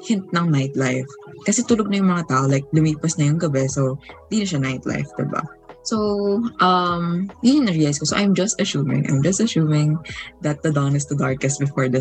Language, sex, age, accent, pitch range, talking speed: Filipino, female, 20-39, native, 135-175 Hz, 185 wpm